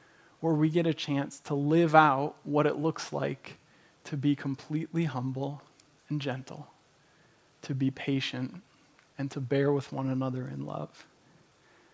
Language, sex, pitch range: English, male, 140-160 Hz